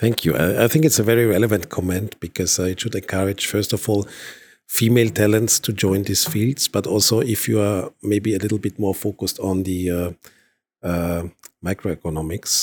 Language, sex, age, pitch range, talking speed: Slovak, male, 50-69, 90-110 Hz, 190 wpm